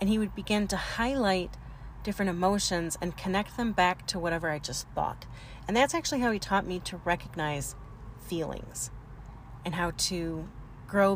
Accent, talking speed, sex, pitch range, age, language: American, 165 wpm, female, 130-180 Hz, 30-49, English